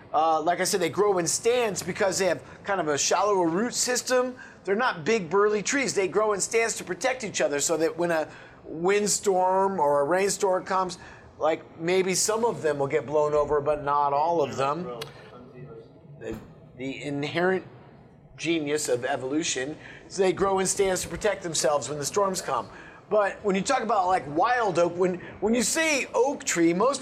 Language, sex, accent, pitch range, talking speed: English, male, American, 160-205 Hz, 190 wpm